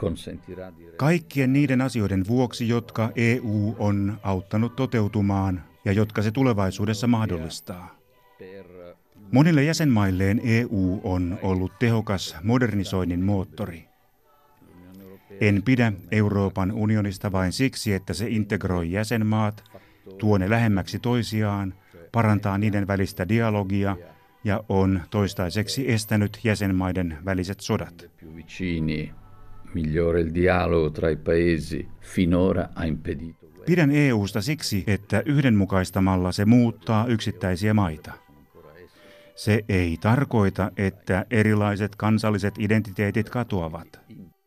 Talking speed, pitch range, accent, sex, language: 85 wpm, 95-110 Hz, native, male, Finnish